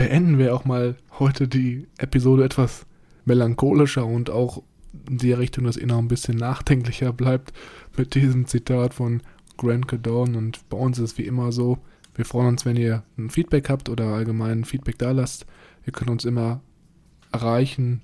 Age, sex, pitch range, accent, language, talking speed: 20-39, male, 115-125 Hz, German, German, 175 wpm